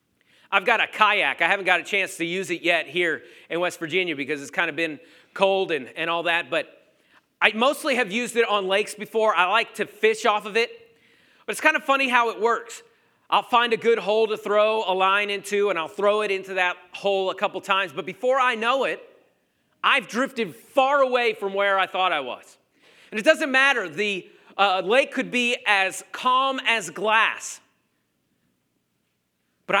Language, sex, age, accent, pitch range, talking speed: English, male, 40-59, American, 195-270 Hz, 200 wpm